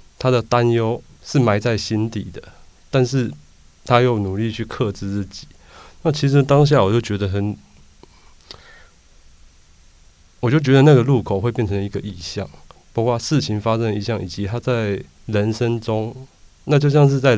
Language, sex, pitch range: Chinese, male, 95-120 Hz